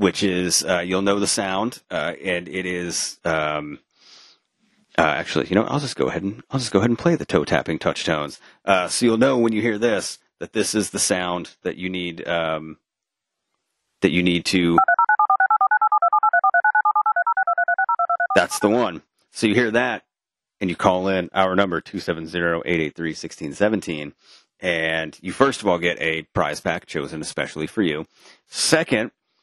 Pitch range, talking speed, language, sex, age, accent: 85-105 Hz, 175 wpm, English, male, 30-49, American